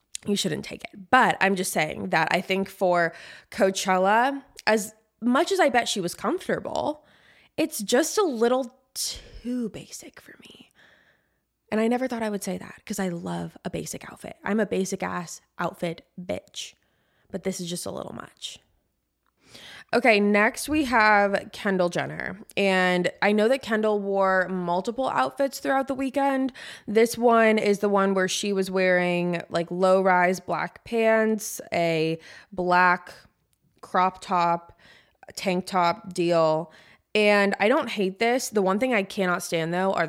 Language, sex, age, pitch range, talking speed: English, female, 20-39, 180-230 Hz, 160 wpm